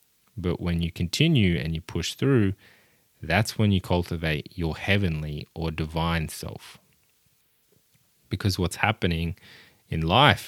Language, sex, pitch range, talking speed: English, male, 85-105 Hz, 125 wpm